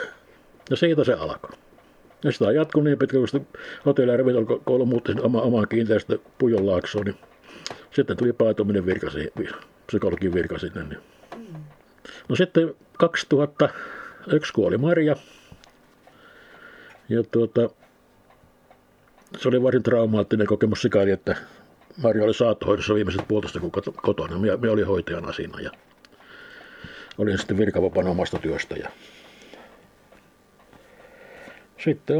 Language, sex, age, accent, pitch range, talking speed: Finnish, male, 60-79, native, 110-140 Hz, 95 wpm